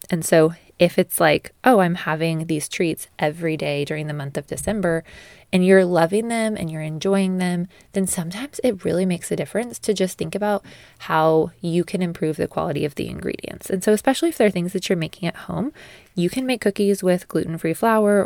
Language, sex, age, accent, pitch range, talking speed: English, female, 20-39, American, 160-195 Hz, 210 wpm